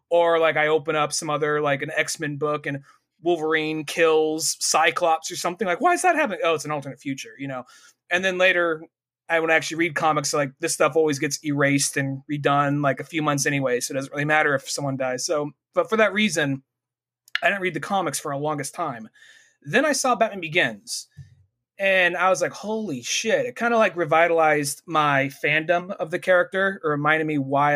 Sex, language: male, English